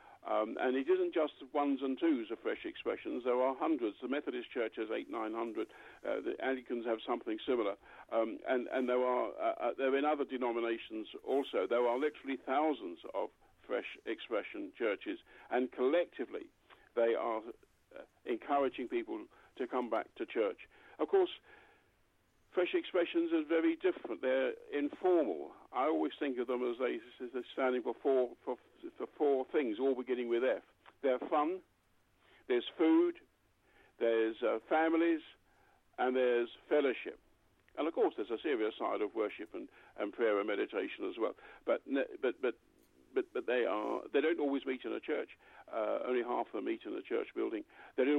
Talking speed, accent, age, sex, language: 175 wpm, British, 60-79, male, English